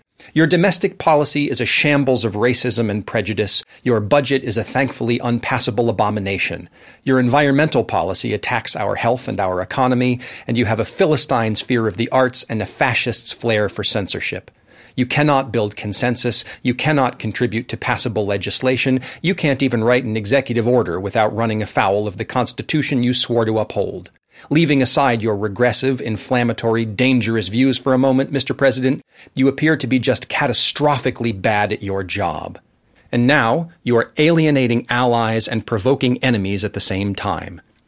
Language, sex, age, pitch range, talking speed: English, male, 40-59, 105-130 Hz, 165 wpm